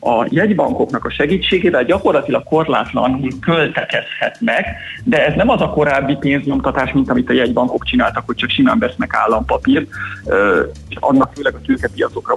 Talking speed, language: 140 wpm, Hungarian